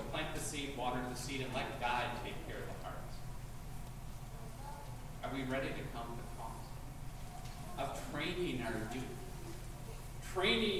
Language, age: English, 40-59